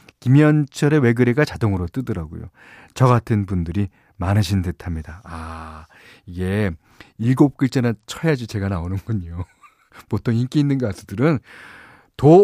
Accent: native